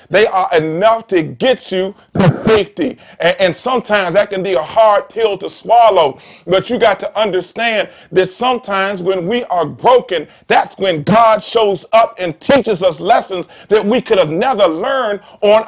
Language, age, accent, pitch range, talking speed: English, 40-59, American, 195-245 Hz, 170 wpm